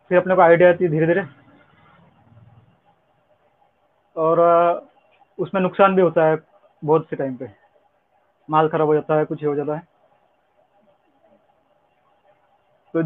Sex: male